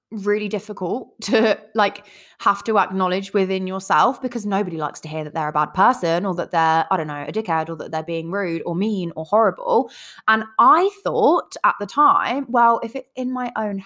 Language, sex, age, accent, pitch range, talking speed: English, female, 20-39, British, 170-235 Hz, 210 wpm